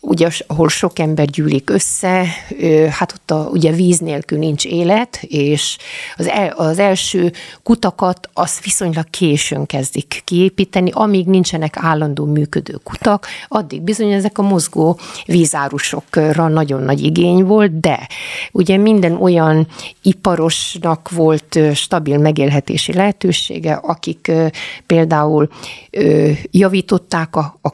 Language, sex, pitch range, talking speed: Hungarian, female, 150-185 Hz, 115 wpm